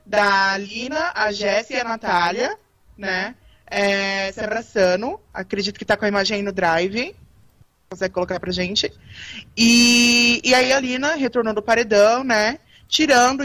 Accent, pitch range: Brazilian, 195-235 Hz